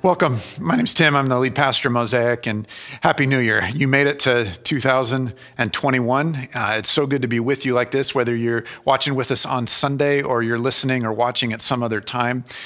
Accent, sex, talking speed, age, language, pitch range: American, male, 215 wpm, 40-59, English, 120-145 Hz